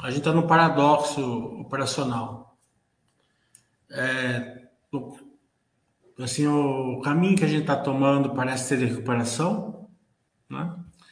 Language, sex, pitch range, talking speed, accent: Portuguese, male, 125-165 Hz, 90 wpm, Brazilian